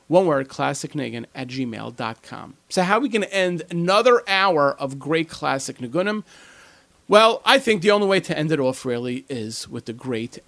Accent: American